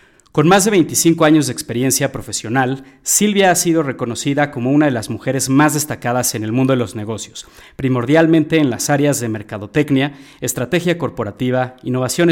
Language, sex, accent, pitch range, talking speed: Spanish, male, Mexican, 120-155 Hz, 165 wpm